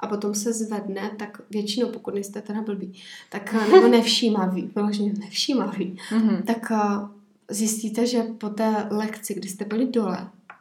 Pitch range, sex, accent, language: 195-220 Hz, female, native, Czech